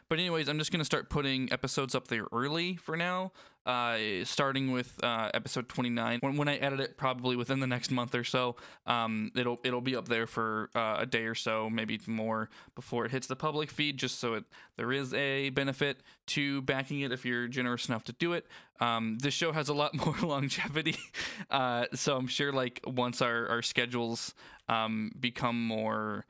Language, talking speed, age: English, 205 wpm, 20-39